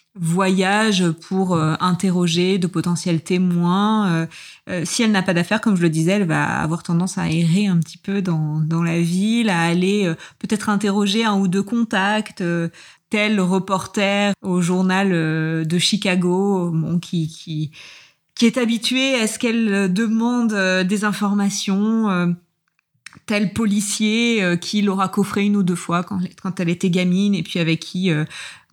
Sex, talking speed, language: female, 170 wpm, French